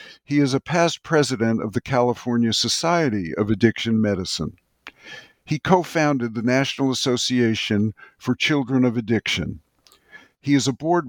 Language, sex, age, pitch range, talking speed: English, male, 60-79, 115-140 Hz, 135 wpm